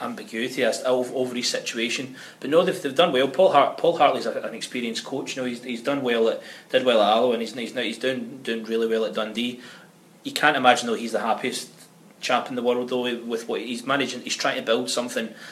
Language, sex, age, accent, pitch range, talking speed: English, male, 20-39, British, 110-180 Hz, 235 wpm